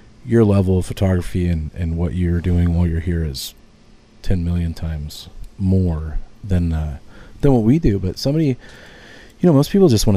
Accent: American